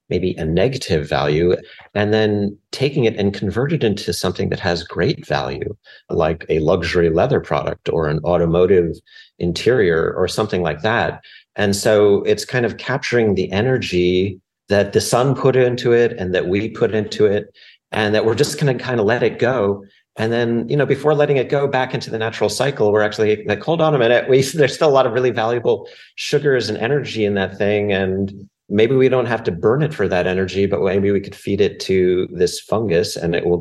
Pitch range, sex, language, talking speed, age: 90-125 Hz, male, English, 210 wpm, 40-59